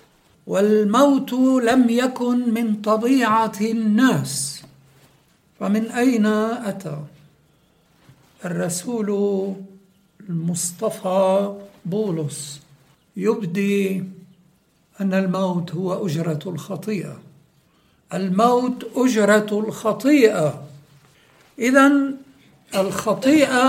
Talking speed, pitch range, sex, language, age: 60 wpm, 175-235 Hz, male, English, 60-79